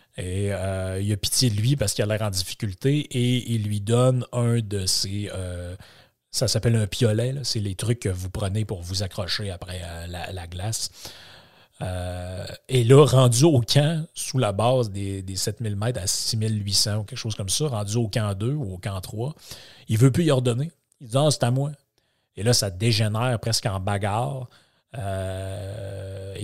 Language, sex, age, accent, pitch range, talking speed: French, male, 30-49, Canadian, 100-125 Hz, 195 wpm